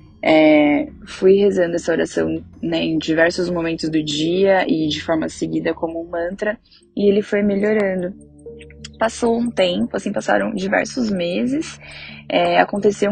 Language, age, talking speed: English, 10-29, 140 wpm